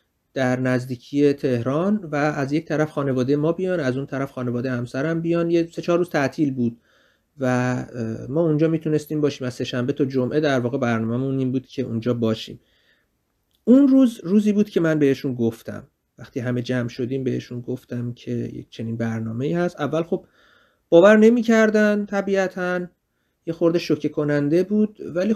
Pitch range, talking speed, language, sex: 125-165 Hz, 170 wpm, Persian, male